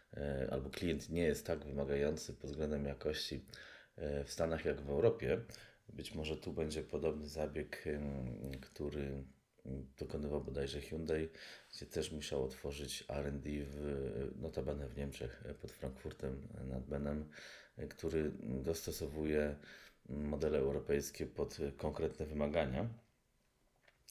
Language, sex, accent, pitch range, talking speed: Polish, male, native, 70-80 Hz, 105 wpm